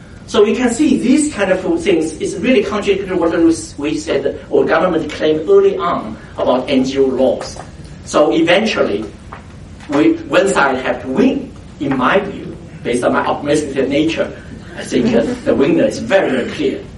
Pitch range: 140-235 Hz